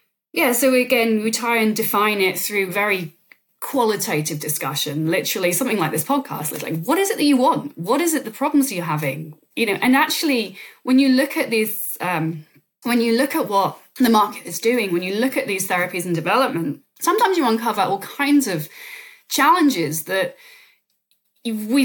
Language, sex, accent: English, female, British